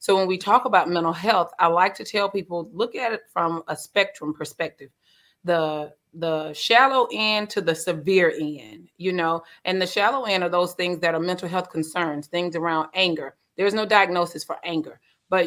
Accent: American